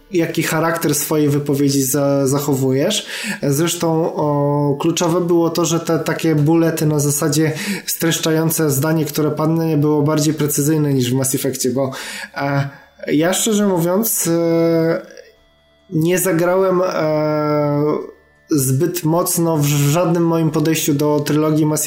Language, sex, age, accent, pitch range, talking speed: Polish, male, 20-39, native, 145-165 Hz, 130 wpm